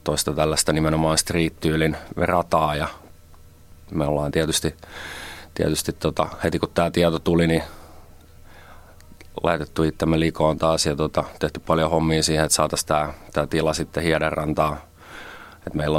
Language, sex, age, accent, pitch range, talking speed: Finnish, male, 30-49, native, 75-85 Hz, 130 wpm